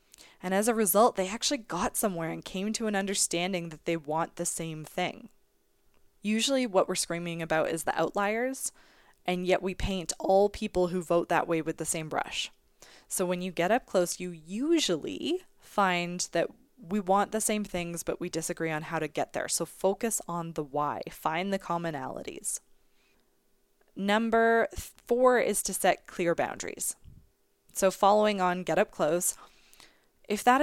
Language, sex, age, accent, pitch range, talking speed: English, female, 20-39, American, 170-215 Hz, 170 wpm